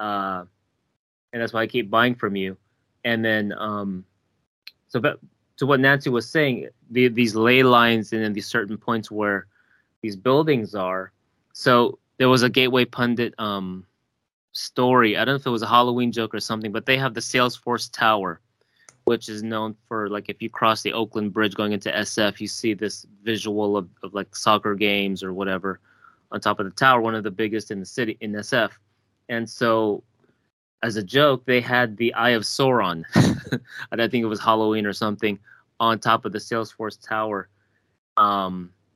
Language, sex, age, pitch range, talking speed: English, male, 20-39, 100-120 Hz, 185 wpm